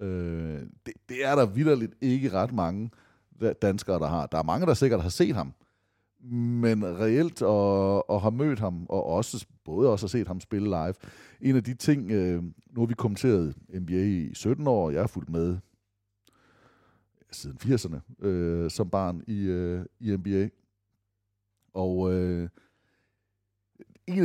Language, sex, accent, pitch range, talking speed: Danish, male, native, 95-130 Hz, 150 wpm